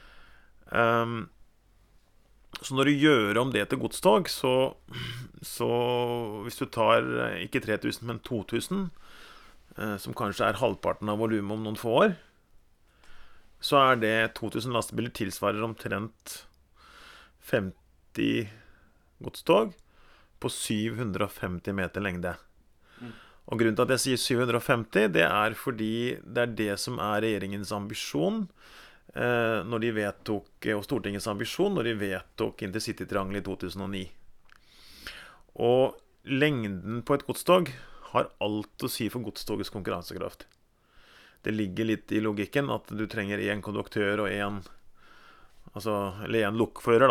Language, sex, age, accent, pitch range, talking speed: English, male, 30-49, Norwegian, 100-120 Hz, 130 wpm